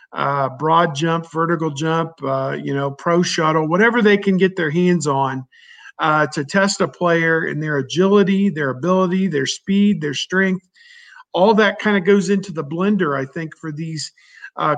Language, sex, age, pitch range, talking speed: English, male, 50-69, 155-195 Hz, 180 wpm